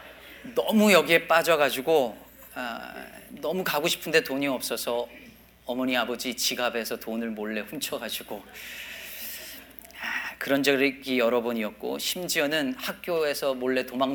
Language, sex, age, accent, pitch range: Korean, male, 40-59, native, 125-165 Hz